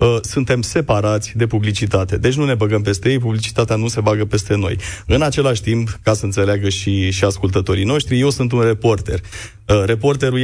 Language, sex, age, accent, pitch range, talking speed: Romanian, male, 30-49, native, 105-135 Hz, 185 wpm